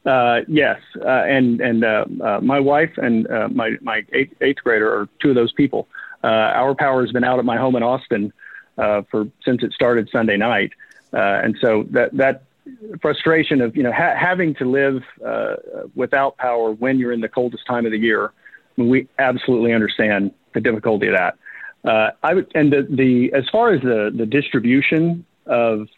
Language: English